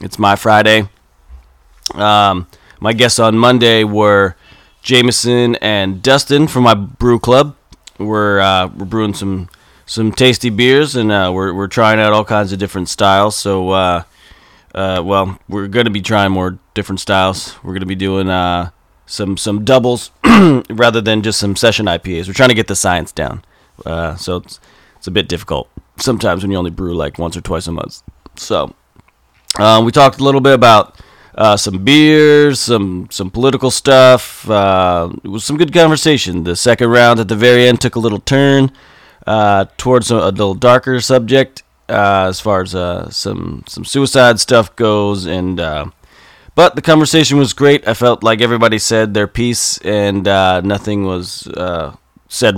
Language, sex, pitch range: English, male, 95-120 Hz